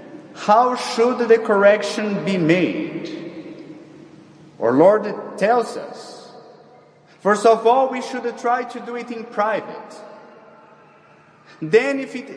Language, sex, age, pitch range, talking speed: English, male, 30-49, 195-245 Hz, 115 wpm